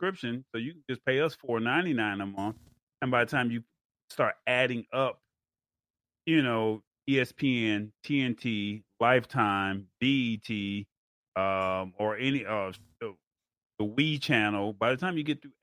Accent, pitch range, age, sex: American, 105-135 Hz, 30-49, male